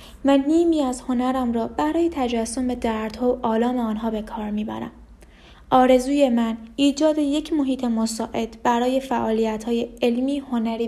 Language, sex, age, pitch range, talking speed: Persian, female, 20-39, 230-280 Hz, 140 wpm